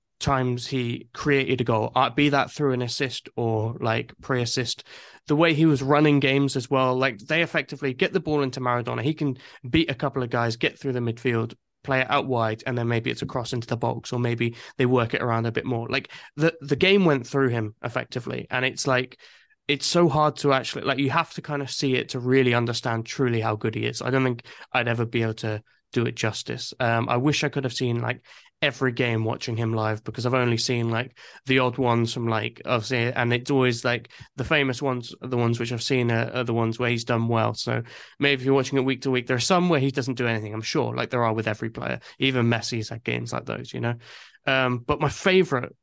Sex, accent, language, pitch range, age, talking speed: male, British, English, 115-140 Hz, 20-39, 245 wpm